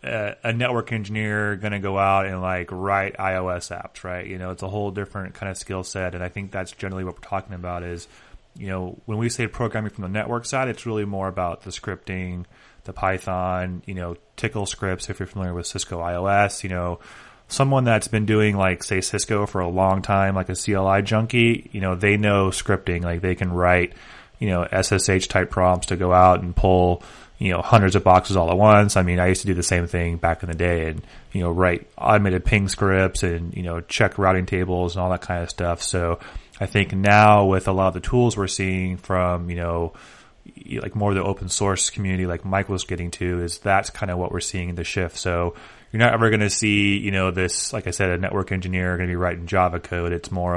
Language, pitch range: English, 90-100 Hz